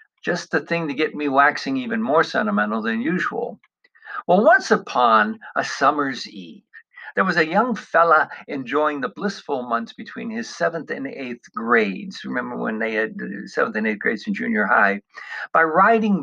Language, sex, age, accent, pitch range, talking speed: English, male, 60-79, American, 145-215 Hz, 170 wpm